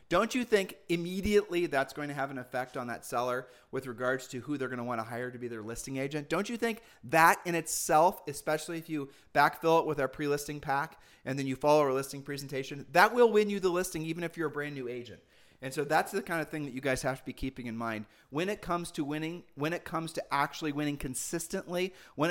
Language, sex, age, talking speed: English, male, 30-49, 250 wpm